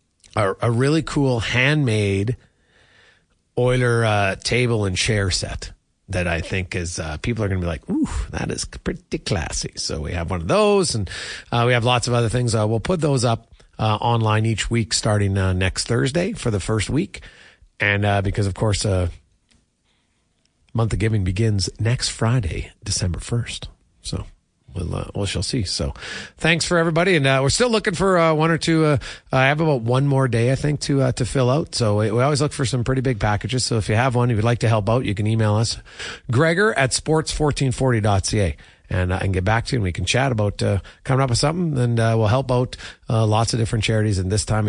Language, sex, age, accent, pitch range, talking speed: English, male, 40-59, American, 100-135 Hz, 220 wpm